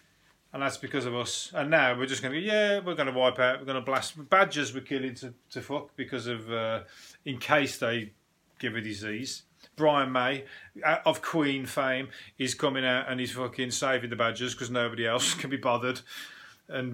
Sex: male